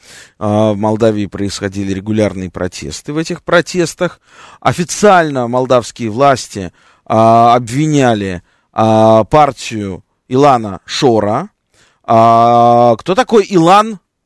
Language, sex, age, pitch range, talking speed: Russian, male, 20-39, 105-140 Hz, 75 wpm